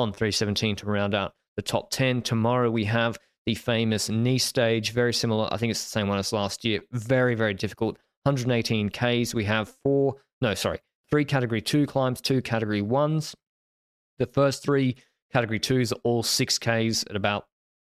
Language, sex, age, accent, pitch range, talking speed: English, male, 20-39, Australian, 105-125 Hz, 180 wpm